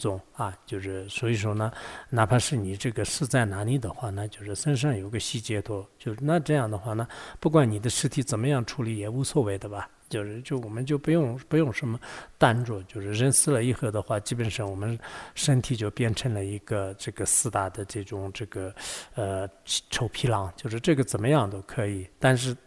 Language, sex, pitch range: English, male, 100-125 Hz